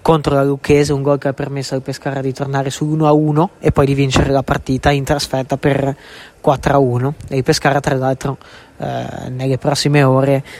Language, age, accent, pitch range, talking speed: Italian, 20-39, native, 135-150 Hz, 180 wpm